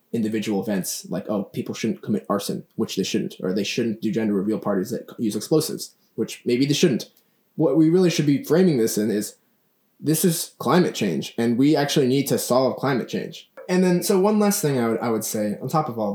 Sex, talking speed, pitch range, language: male, 225 wpm, 120-170 Hz, English